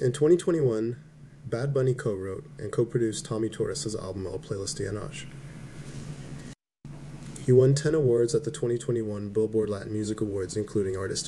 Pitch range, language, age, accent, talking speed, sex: 105-140 Hz, English, 20-39, American, 145 wpm, male